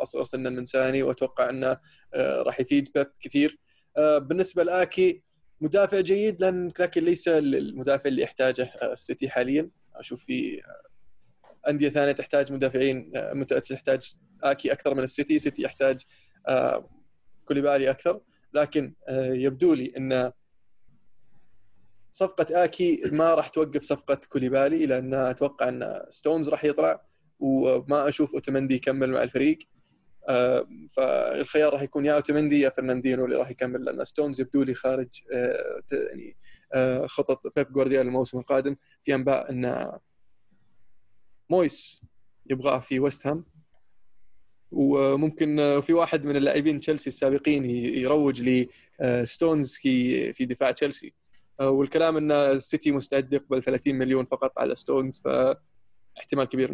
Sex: male